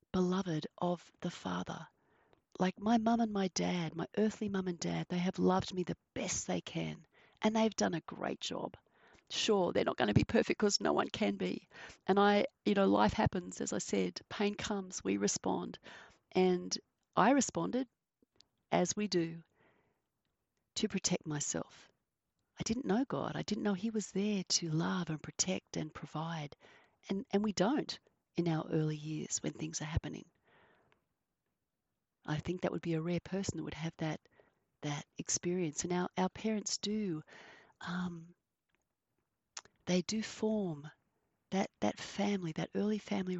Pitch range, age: 165-205 Hz, 40-59